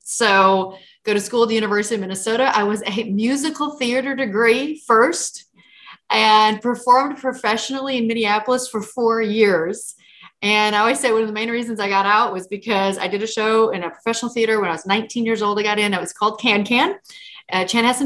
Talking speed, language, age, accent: 205 wpm, English, 30-49, American